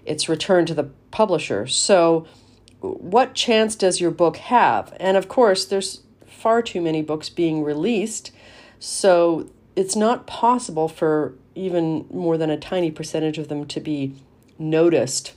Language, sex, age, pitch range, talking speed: English, female, 40-59, 140-200 Hz, 150 wpm